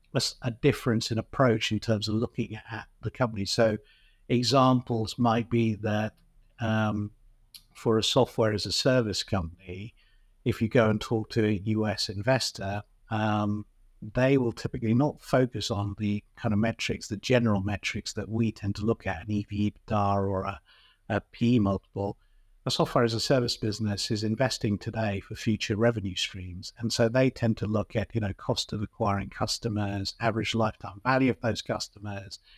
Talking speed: 170 wpm